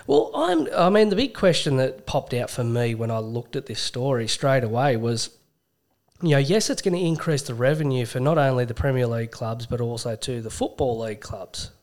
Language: English